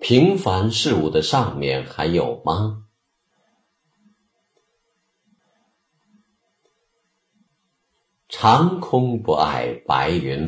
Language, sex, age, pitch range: Chinese, male, 50-69, 80-135 Hz